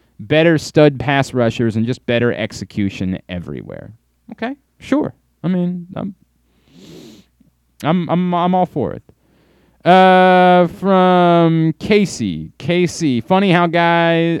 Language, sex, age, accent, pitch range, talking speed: English, male, 30-49, American, 110-160 Hz, 110 wpm